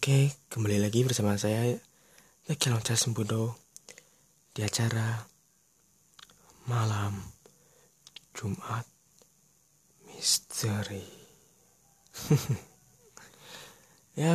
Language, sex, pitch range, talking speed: Indonesian, male, 110-135 Hz, 60 wpm